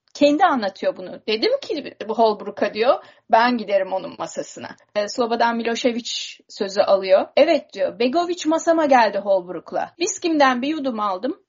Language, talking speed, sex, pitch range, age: Turkish, 135 wpm, female, 245-320 Hz, 30-49